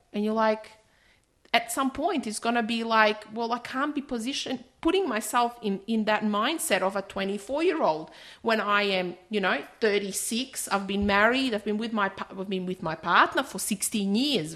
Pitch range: 180-220 Hz